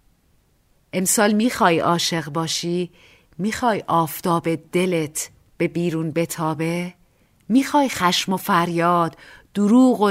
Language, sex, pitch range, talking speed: Persian, female, 160-205 Hz, 100 wpm